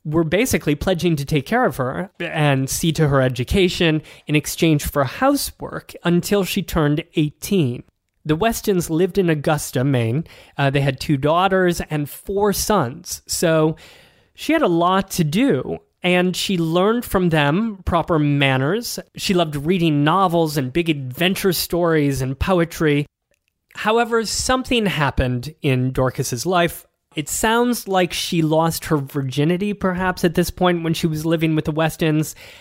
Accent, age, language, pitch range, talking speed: American, 30-49, English, 145-185 Hz, 155 wpm